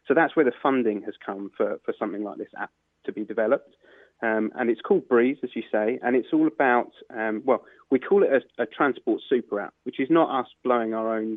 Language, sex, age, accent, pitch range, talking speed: English, male, 20-39, British, 110-135 Hz, 240 wpm